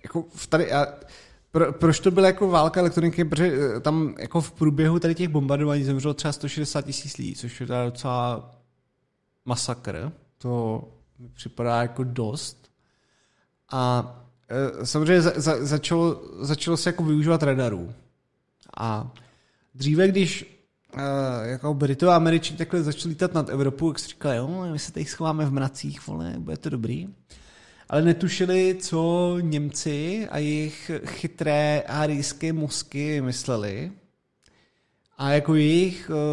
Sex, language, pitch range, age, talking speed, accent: male, Czech, 120-155 Hz, 20-39, 135 wpm, native